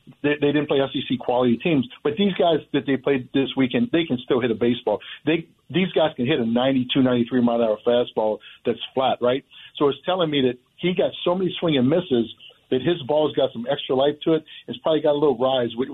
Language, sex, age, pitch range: English, male, 50-69, 125-145 Hz